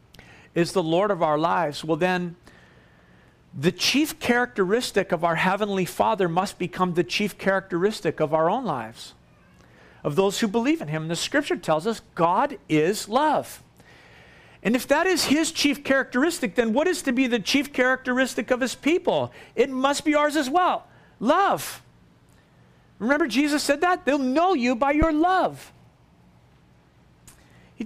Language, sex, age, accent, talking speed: English, male, 50-69, American, 160 wpm